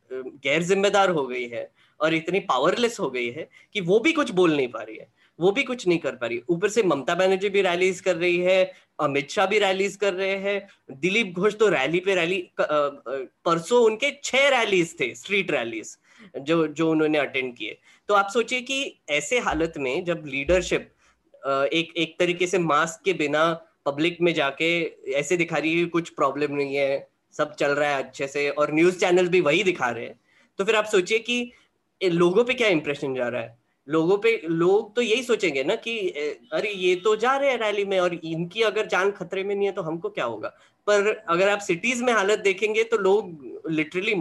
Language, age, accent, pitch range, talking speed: Hindi, 20-39, native, 155-215 Hz, 210 wpm